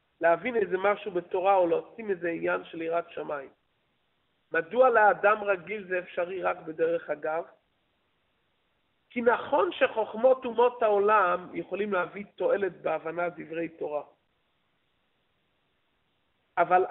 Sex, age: male, 50-69